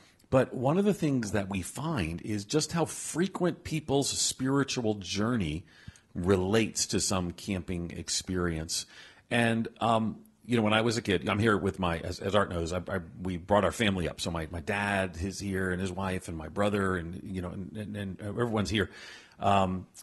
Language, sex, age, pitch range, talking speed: English, male, 40-59, 90-115 Hz, 195 wpm